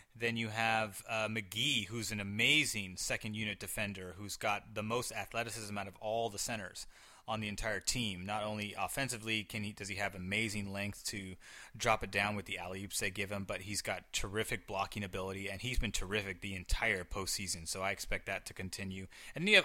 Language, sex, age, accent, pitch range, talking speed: English, male, 30-49, American, 100-120 Hz, 210 wpm